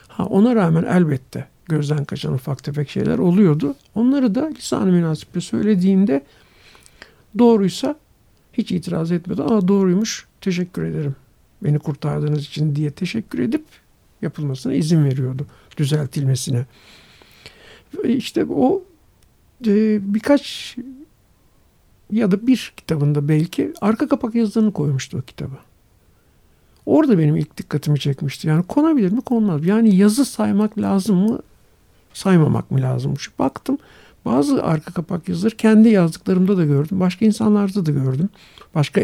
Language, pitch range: Turkish, 150-215 Hz